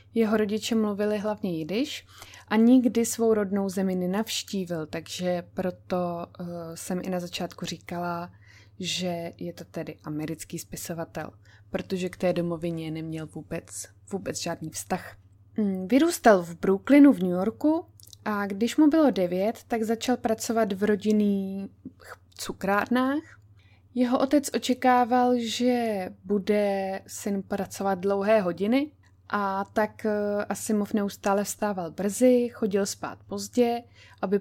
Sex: female